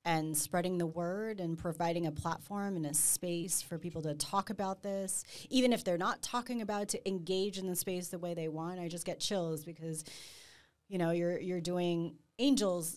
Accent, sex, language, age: American, female, English, 30-49